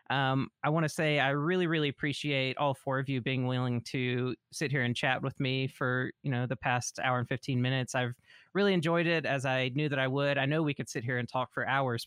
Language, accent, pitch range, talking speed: English, American, 120-145 Hz, 255 wpm